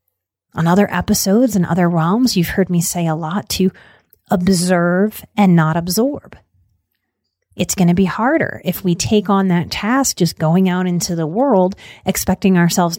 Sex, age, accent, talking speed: female, 30-49, American, 165 wpm